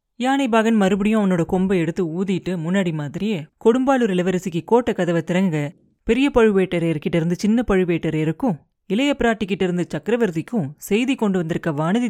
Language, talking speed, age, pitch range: Tamil, 125 wpm, 30-49, 175-225 Hz